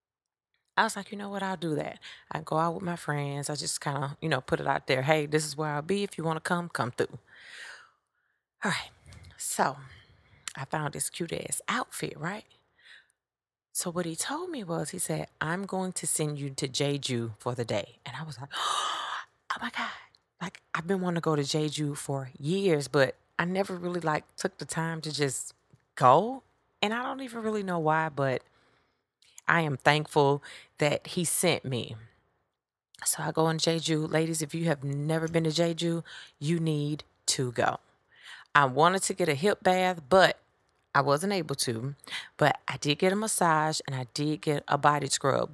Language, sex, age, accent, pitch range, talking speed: English, female, 30-49, American, 140-175 Hz, 200 wpm